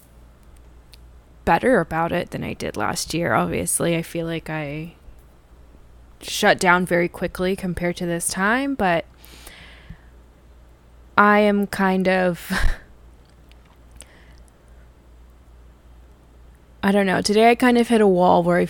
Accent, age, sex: American, 20-39, female